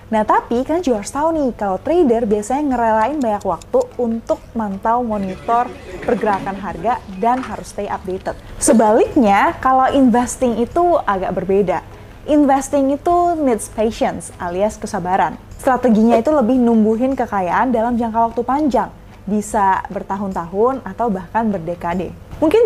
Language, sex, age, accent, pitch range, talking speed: Indonesian, female, 20-39, native, 210-265 Hz, 125 wpm